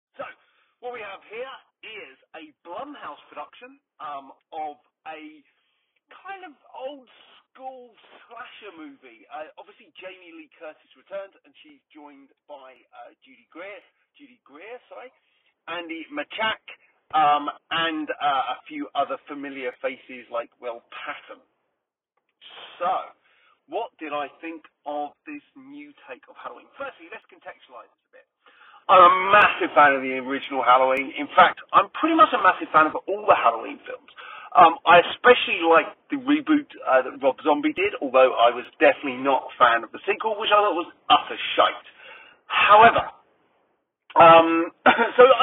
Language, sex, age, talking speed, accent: English, male, 40-59, 150 wpm, British